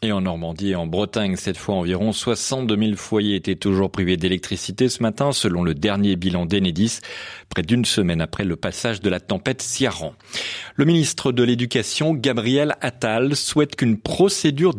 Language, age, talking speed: French, 40-59, 170 wpm